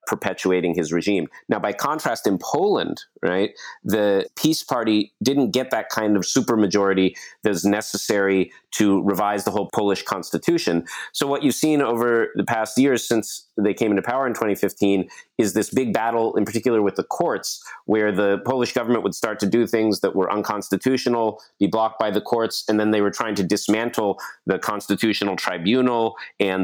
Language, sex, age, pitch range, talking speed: English, male, 30-49, 100-115 Hz, 175 wpm